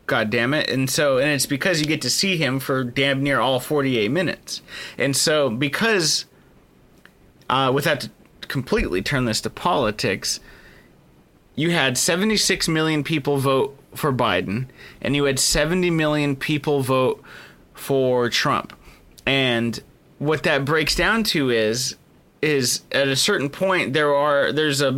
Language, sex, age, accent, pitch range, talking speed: English, male, 30-49, American, 130-155 Hz, 150 wpm